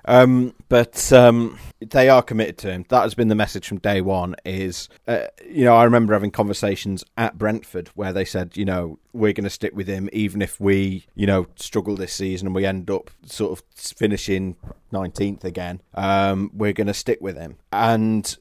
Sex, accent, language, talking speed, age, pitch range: male, British, English, 200 wpm, 30-49, 95-105 Hz